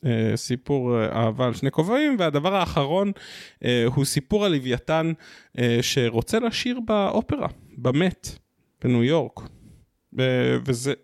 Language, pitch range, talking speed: Hebrew, 120-165 Hz, 120 wpm